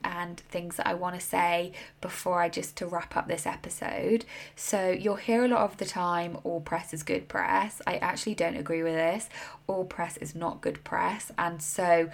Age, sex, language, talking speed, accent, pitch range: 10-29, female, English, 205 wpm, British, 170-210 Hz